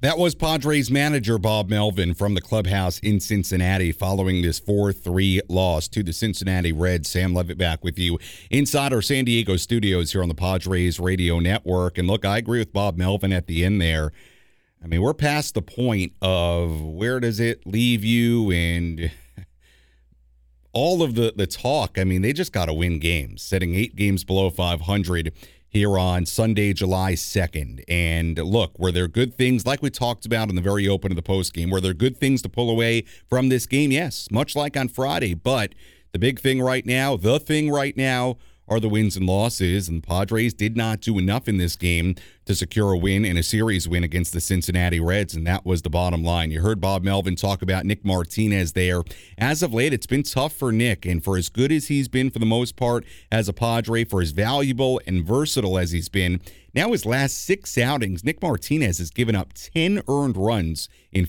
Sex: male